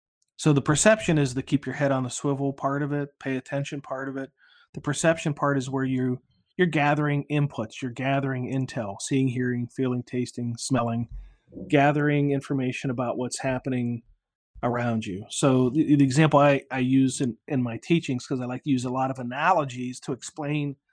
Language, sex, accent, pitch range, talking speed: English, male, American, 125-145 Hz, 190 wpm